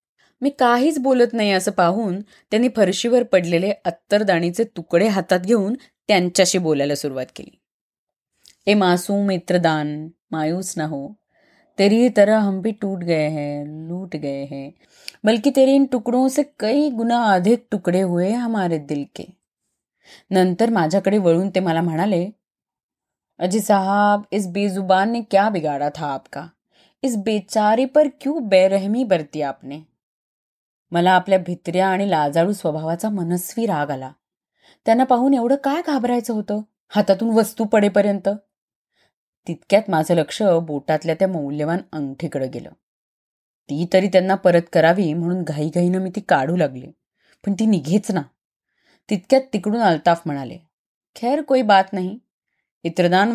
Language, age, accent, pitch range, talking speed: Marathi, 20-39, native, 170-220 Hz, 130 wpm